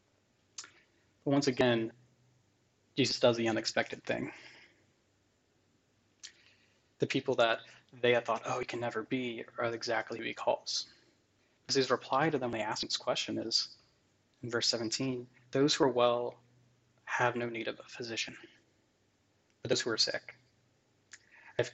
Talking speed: 145 wpm